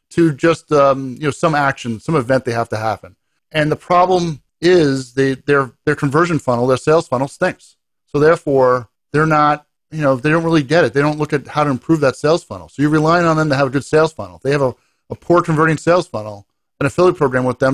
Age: 40-59